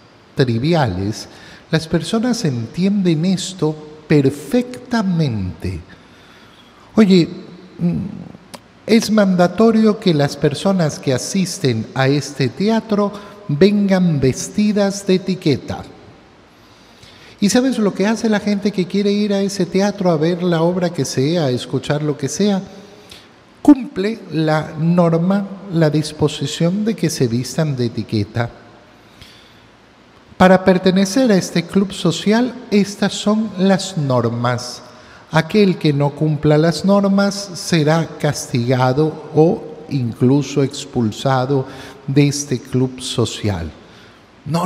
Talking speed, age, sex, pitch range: 110 wpm, 50-69, male, 135-195 Hz